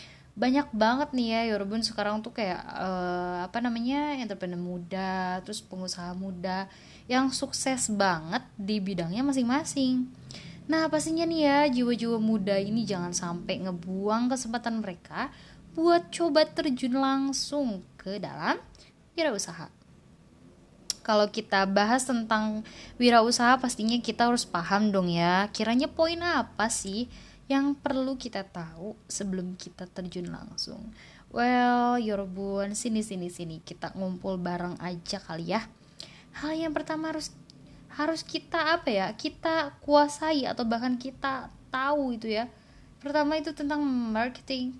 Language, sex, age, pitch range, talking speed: Indonesian, female, 20-39, 195-280 Hz, 125 wpm